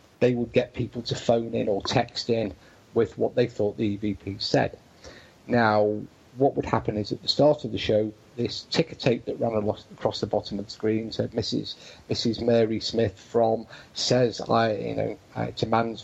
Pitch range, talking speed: 110-140 Hz, 195 wpm